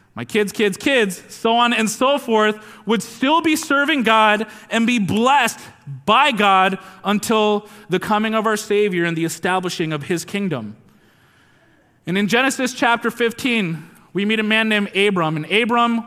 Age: 30-49